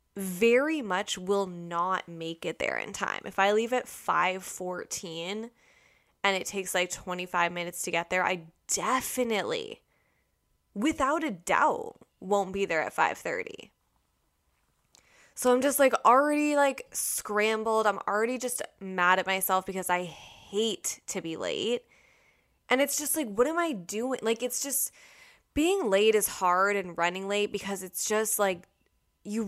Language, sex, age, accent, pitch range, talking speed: English, female, 20-39, American, 185-250 Hz, 155 wpm